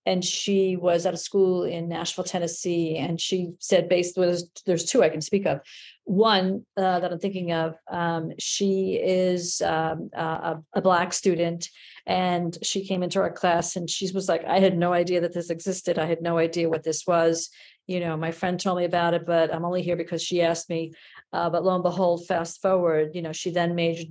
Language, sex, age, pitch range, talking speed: English, female, 40-59, 165-185 Hz, 215 wpm